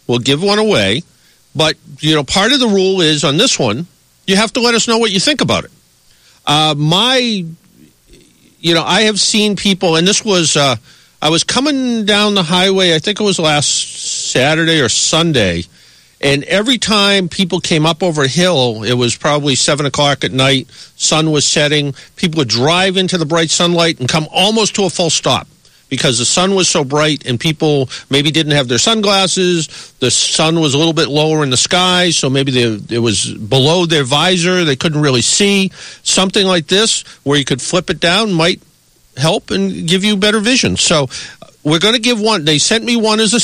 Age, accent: 50-69, American